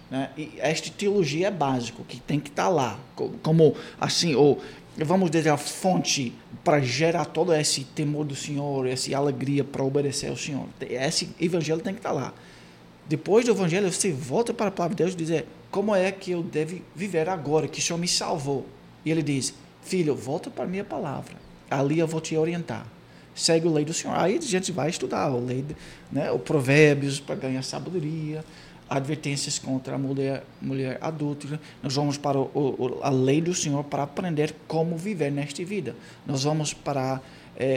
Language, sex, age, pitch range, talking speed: Portuguese, male, 20-39, 135-165 Hz, 190 wpm